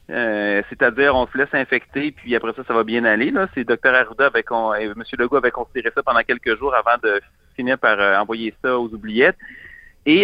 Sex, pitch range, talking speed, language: male, 120-155 Hz, 205 wpm, French